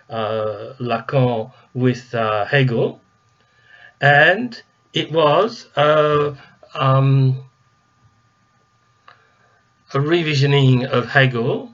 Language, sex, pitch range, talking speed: English, male, 120-135 Hz, 65 wpm